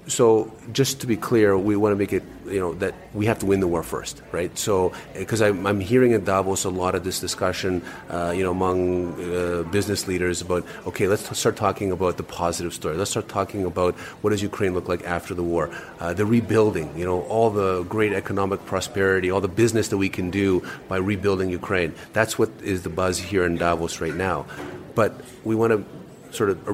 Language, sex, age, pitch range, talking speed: English, male, 30-49, 90-110 Hz, 220 wpm